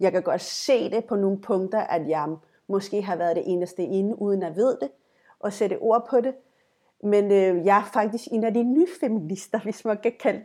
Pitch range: 185-240 Hz